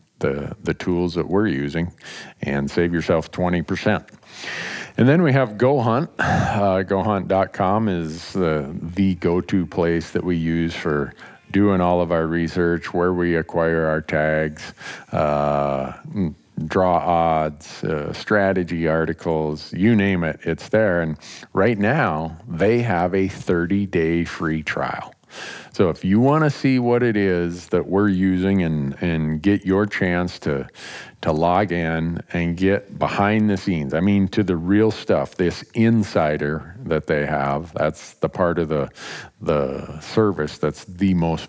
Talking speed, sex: 150 wpm, male